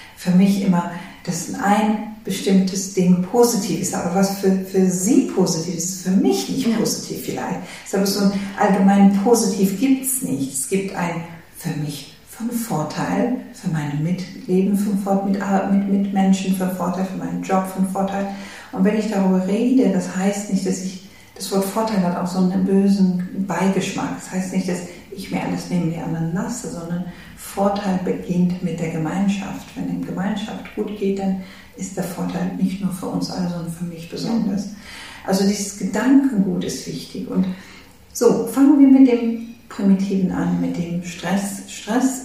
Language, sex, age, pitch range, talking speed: German, female, 50-69, 180-205 Hz, 180 wpm